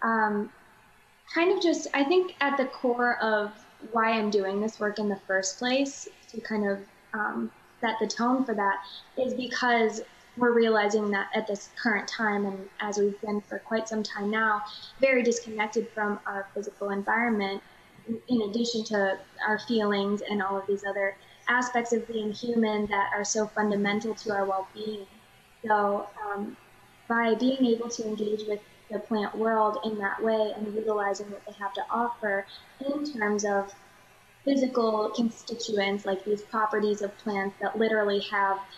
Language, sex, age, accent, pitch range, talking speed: English, female, 20-39, American, 200-220 Hz, 165 wpm